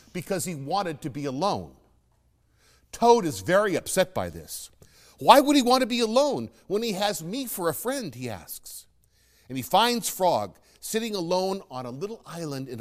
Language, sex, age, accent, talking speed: English, male, 50-69, American, 185 wpm